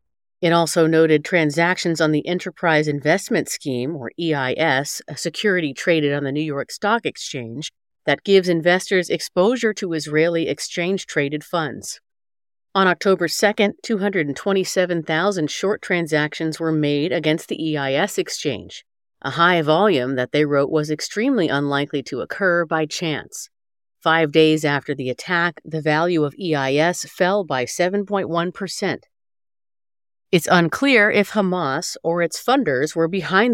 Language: English